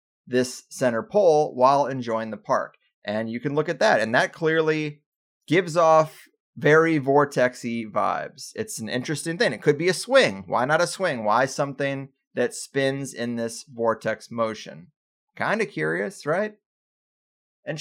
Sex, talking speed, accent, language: male, 160 wpm, American, English